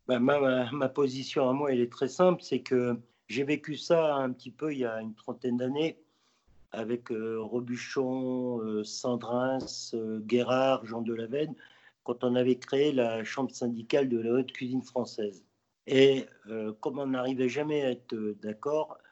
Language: French